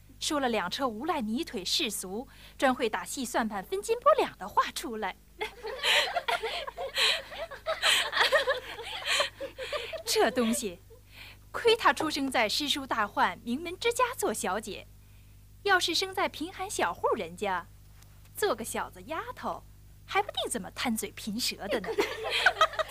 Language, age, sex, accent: Chinese, 20-39, female, native